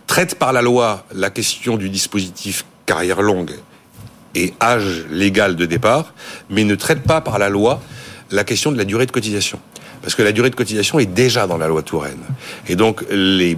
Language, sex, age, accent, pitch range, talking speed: French, male, 60-79, French, 105-150 Hz, 195 wpm